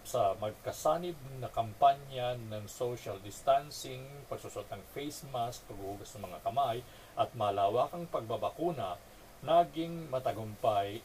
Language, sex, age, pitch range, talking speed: Filipino, male, 50-69, 110-150 Hz, 110 wpm